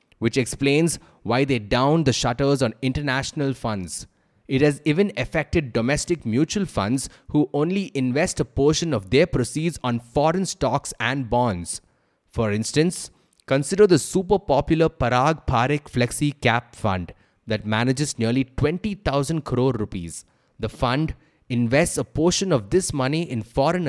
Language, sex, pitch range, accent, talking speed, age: English, male, 115-155 Hz, Indian, 145 wpm, 30-49